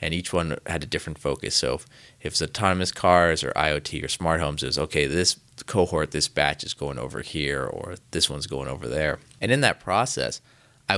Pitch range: 75-100 Hz